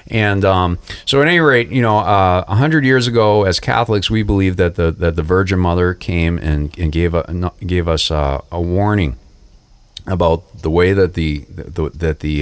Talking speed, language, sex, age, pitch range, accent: 200 wpm, English, male, 40-59, 80-95 Hz, American